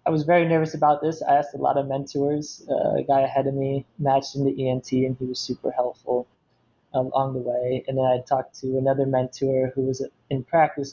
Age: 20-39